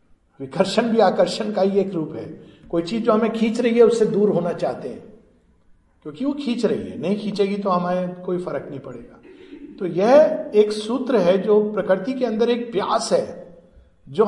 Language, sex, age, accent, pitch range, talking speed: Hindi, male, 50-69, native, 155-225 Hz, 195 wpm